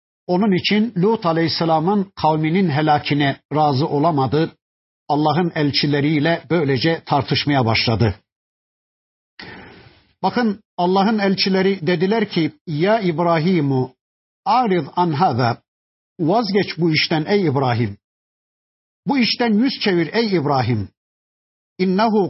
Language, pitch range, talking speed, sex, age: Turkish, 140-185 Hz, 85 wpm, male, 50-69